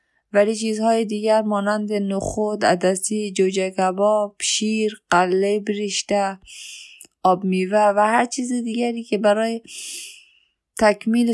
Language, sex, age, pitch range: Persian, female, 20-39, 195-225 Hz